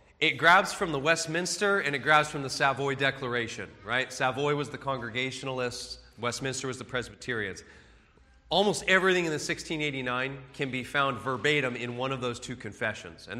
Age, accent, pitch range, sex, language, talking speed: 30-49, American, 120-165 Hz, male, English, 165 wpm